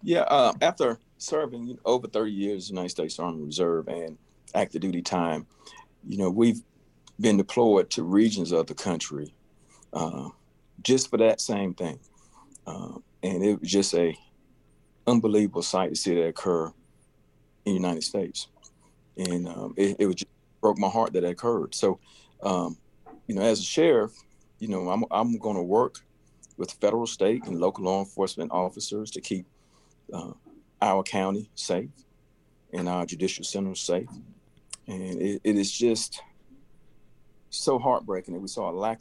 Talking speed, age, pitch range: 165 wpm, 50-69, 85-105 Hz